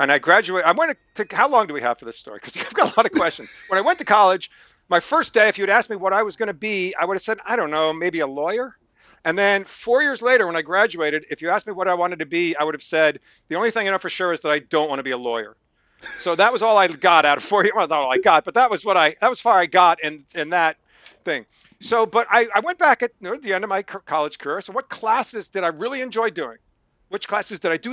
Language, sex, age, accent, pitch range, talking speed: English, male, 50-69, American, 155-215 Hz, 305 wpm